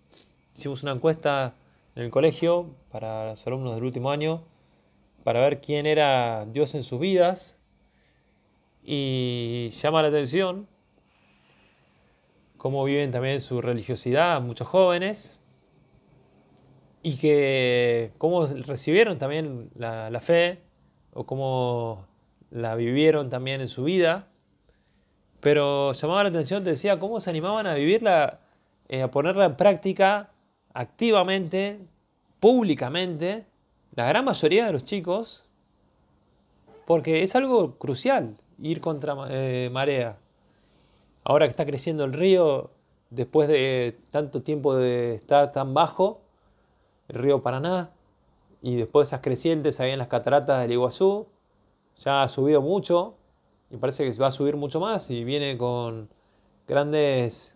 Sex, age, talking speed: male, 20-39, 130 wpm